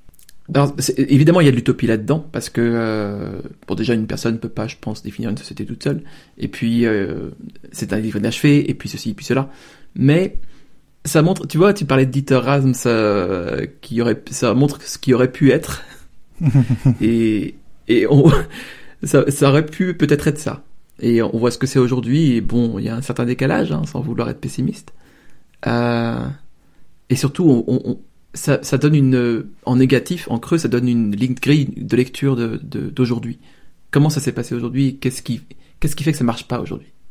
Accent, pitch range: French, 115-145 Hz